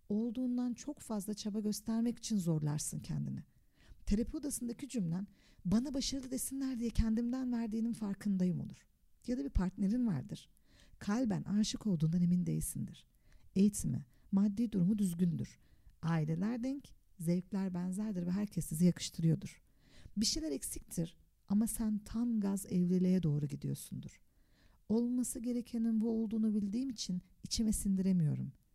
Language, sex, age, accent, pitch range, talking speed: Turkish, female, 50-69, native, 175-225 Hz, 125 wpm